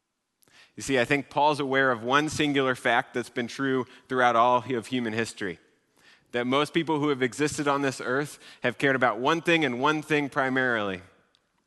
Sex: male